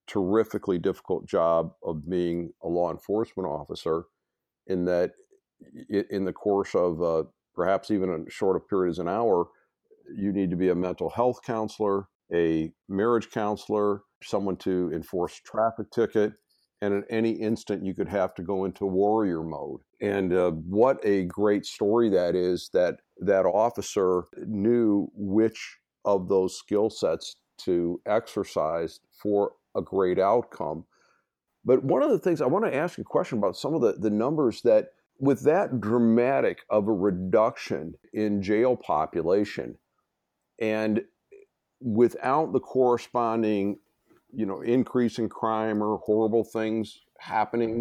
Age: 50-69